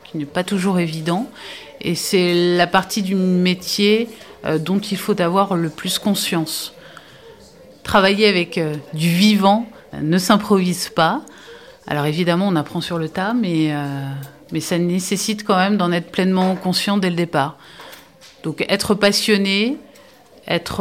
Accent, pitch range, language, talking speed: French, 160-195 Hz, French, 150 wpm